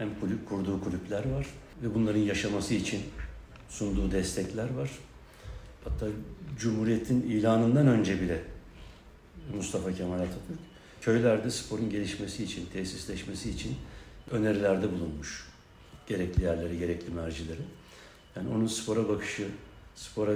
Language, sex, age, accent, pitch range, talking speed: Turkish, male, 60-79, native, 95-120 Hz, 105 wpm